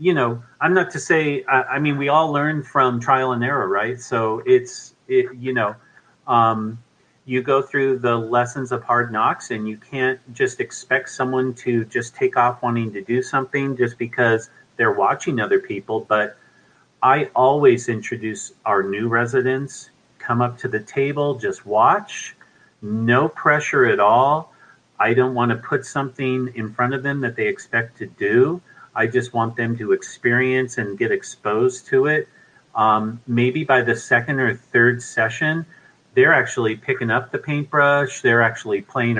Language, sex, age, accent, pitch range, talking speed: English, male, 40-59, American, 120-145 Hz, 170 wpm